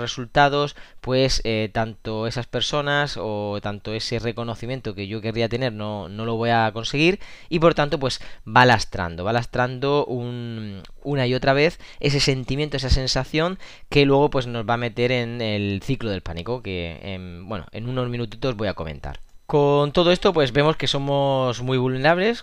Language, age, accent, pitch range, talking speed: Spanish, 20-39, Spanish, 110-135 Hz, 175 wpm